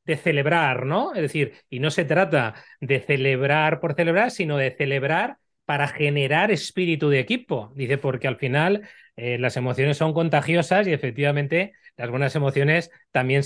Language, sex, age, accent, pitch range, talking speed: Spanish, male, 30-49, Spanish, 145-185 Hz, 160 wpm